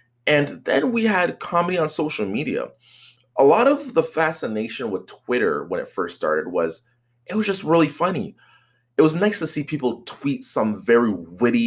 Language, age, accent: English, 20-39, American